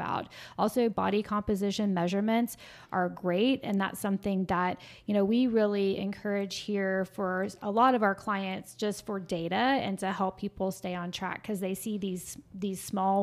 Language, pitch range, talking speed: English, 185-205 Hz, 170 wpm